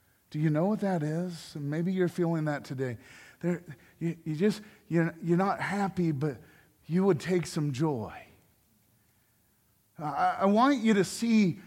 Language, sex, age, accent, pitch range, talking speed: English, male, 40-59, American, 155-210 Hz, 160 wpm